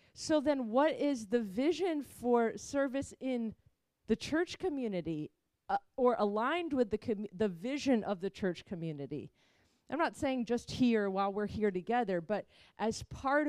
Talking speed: 160 wpm